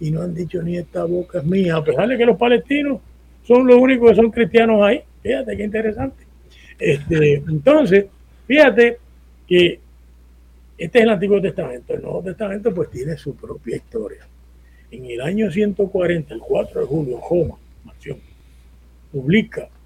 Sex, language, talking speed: male, Spanish, 150 wpm